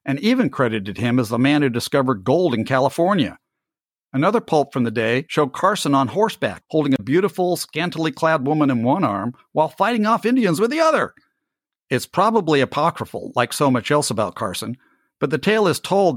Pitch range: 130-180 Hz